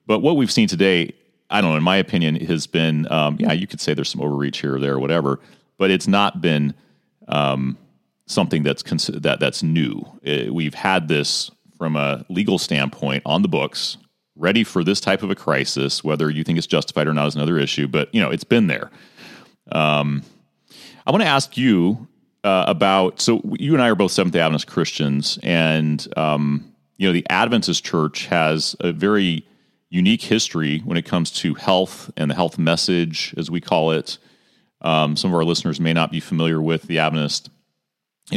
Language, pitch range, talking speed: English, 75-95 Hz, 195 wpm